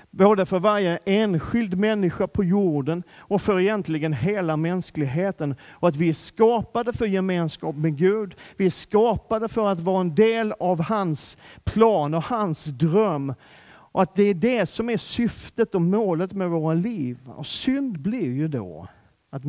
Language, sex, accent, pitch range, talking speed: Swedish, male, native, 130-185 Hz, 165 wpm